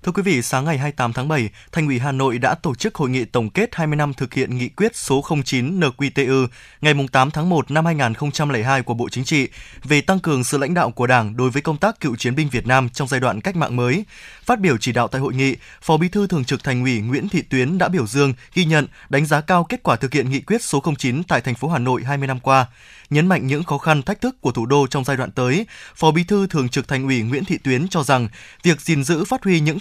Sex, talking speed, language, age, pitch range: male, 270 wpm, Vietnamese, 20-39, 135-175 Hz